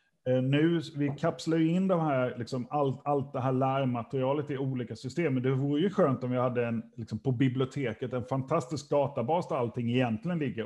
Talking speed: 195 wpm